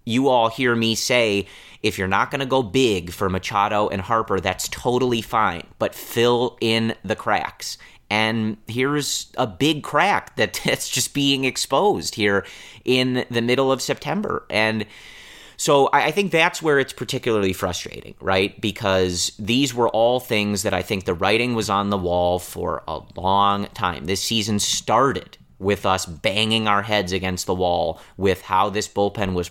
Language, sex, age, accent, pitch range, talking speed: English, male, 30-49, American, 95-120 Hz, 170 wpm